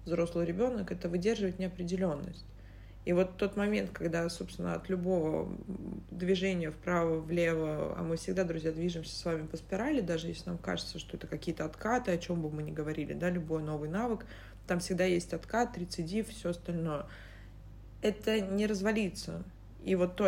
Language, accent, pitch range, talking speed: Russian, native, 160-195 Hz, 165 wpm